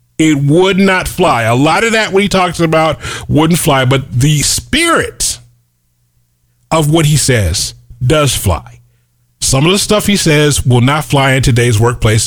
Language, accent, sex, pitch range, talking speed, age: English, American, male, 110-150 Hz, 170 wpm, 40-59